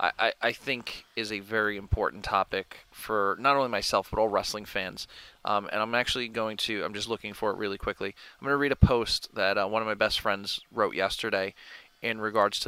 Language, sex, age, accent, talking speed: English, male, 30-49, American, 220 wpm